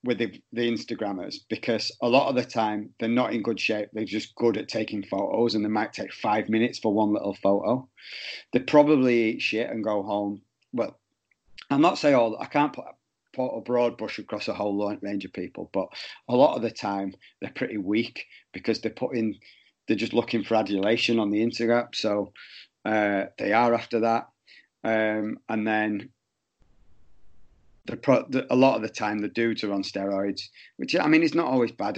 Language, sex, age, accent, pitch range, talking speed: English, male, 40-59, British, 105-115 Hz, 195 wpm